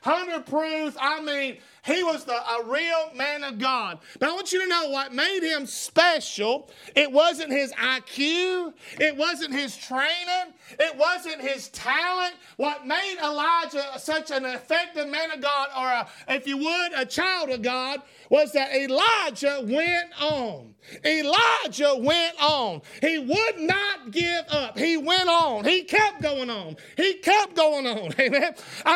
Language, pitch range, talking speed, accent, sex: English, 275-345 Hz, 155 wpm, American, male